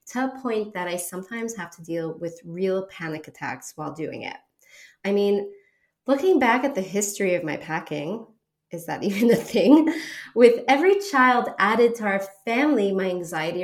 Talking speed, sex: 175 wpm, female